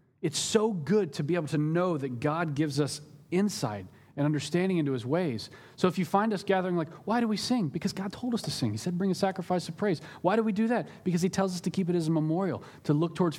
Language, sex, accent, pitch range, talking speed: English, male, American, 135-185 Hz, 270 wpm